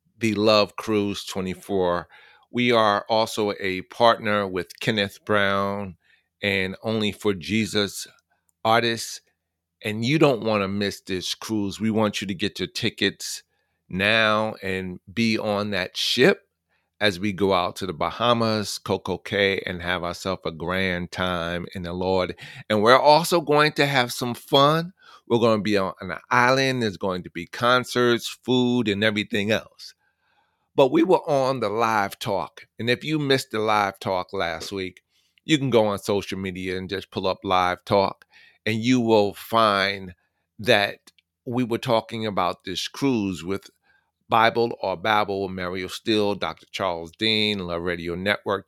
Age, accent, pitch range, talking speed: 40-59, American, 95-115 Hz, 160 wpm